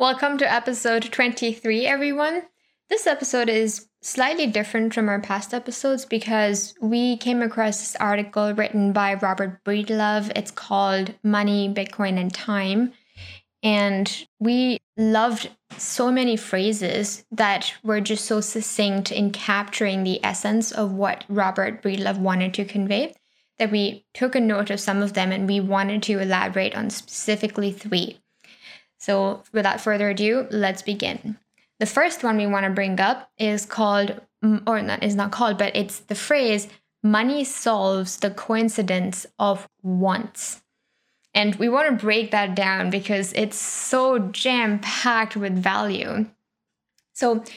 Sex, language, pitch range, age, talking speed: female, English, 200-230 Hz, 10-29, 145 wpm